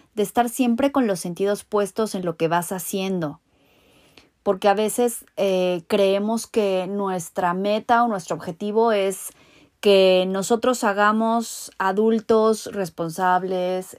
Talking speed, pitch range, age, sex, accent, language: 125 wpm, 185-225 Hz, 30-49, female, Mexican, Spanish